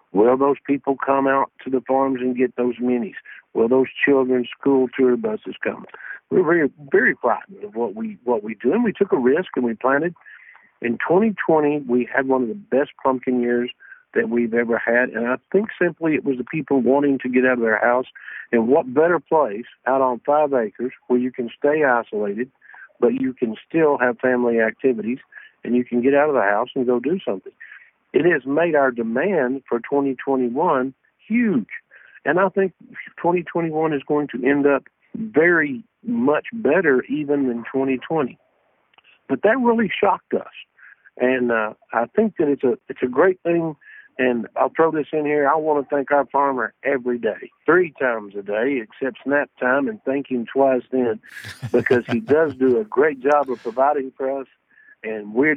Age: 60-79